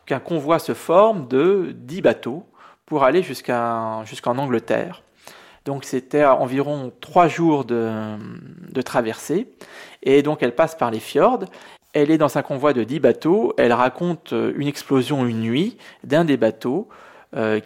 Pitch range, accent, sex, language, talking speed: 115-145 Hz, French, male, French, 155 wpm